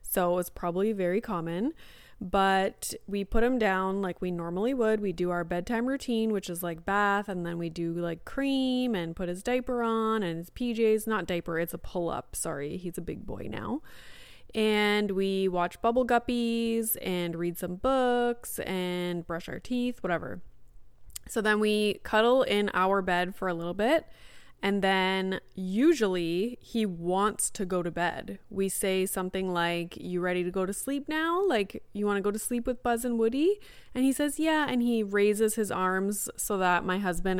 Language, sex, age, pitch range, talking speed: English, female, 20-39, 180-220 Hz, 190 wpm